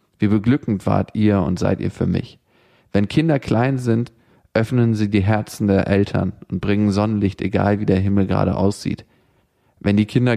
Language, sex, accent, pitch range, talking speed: German, male, German, 100-120 Hz, 180 wpm